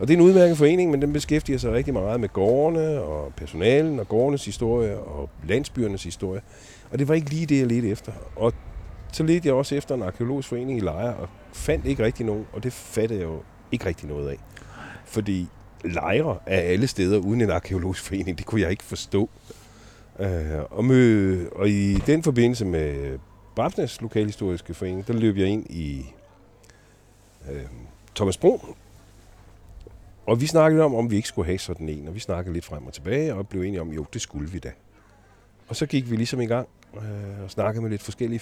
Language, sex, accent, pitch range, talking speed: Danish, male, native, 95-125 Hz, 195 wpm